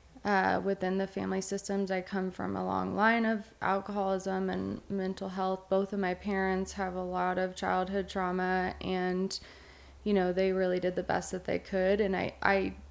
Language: English